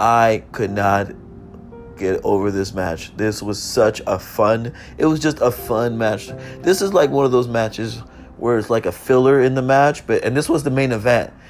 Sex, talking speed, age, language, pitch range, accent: male, 210 wpm, 30-49, English, 105-140 Hz, American